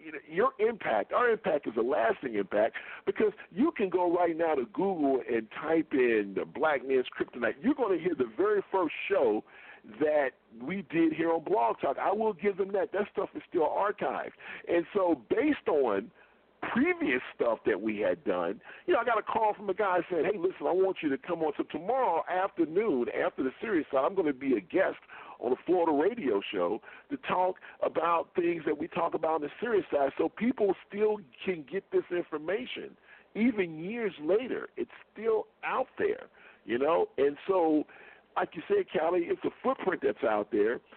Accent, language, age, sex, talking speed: American, English, 50-69, male, 195 wpm